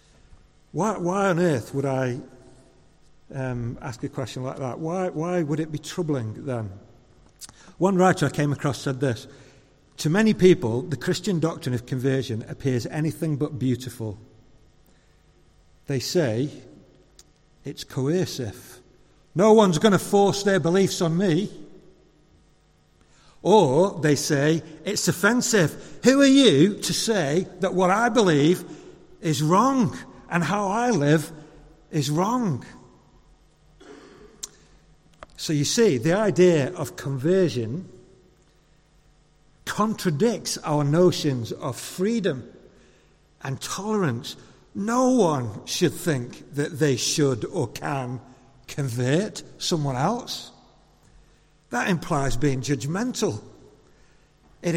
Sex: male